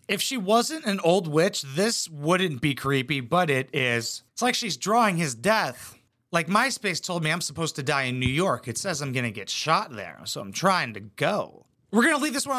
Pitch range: 125-190 Hz